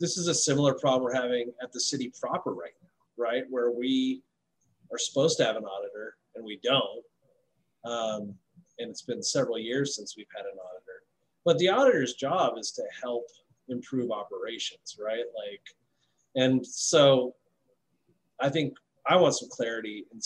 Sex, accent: male, American